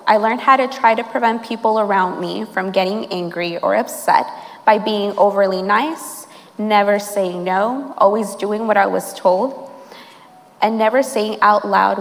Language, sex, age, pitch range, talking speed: English, female, 20-39, 200-250 Hz, 165 wpm